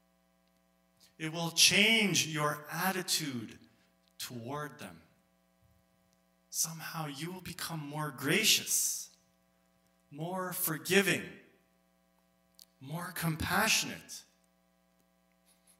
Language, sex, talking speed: English, male, 65 wpm